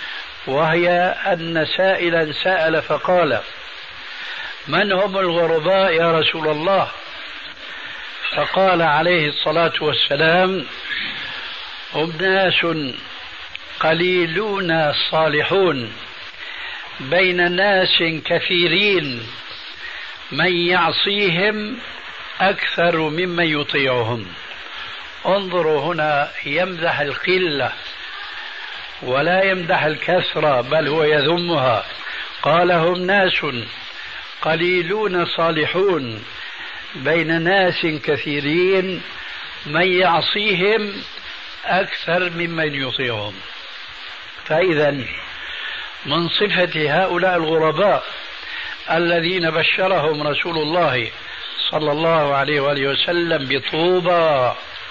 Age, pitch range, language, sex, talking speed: 60-79, 150-185 Hz, Arabic, male, 70 wpm